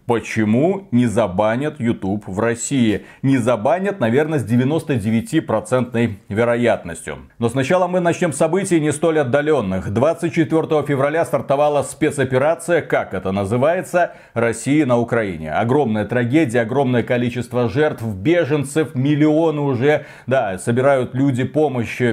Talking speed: 115 wpm